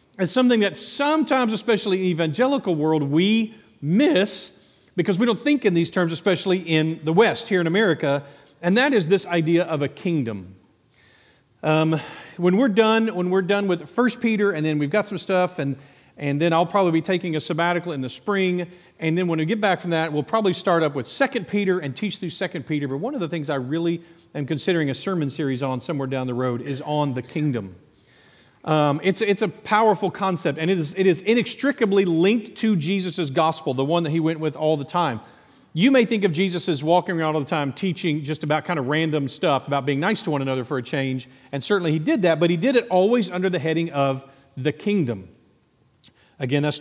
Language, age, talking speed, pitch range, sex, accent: English, 40-59, 220 wpm, 145-200 Hz, male, American